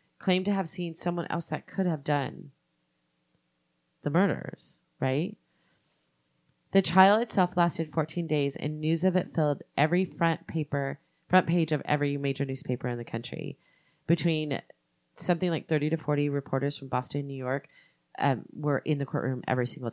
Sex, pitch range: female, 140-170 Hz